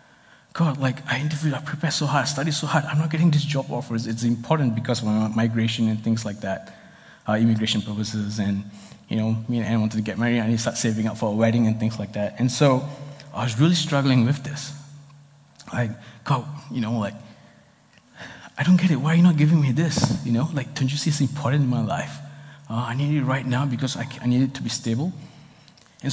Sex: male